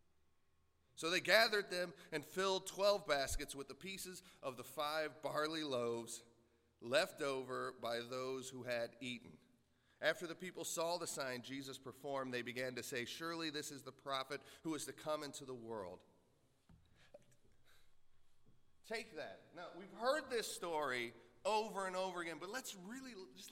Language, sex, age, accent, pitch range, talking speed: English, male, 40-59, American, 140-210 Hz, 160 wpm